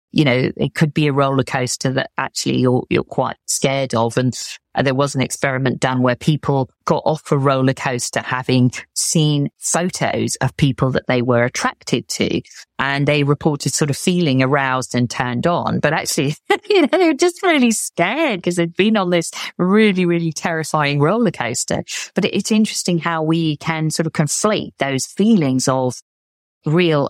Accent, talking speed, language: British, 175 wpm, English